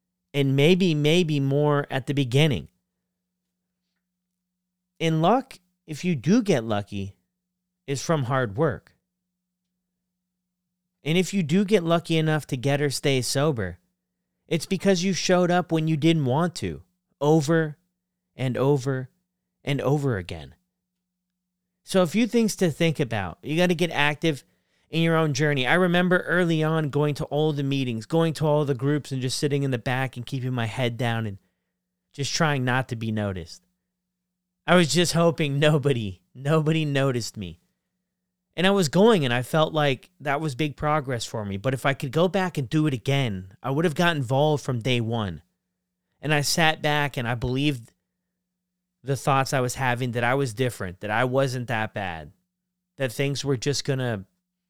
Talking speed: 175 wpm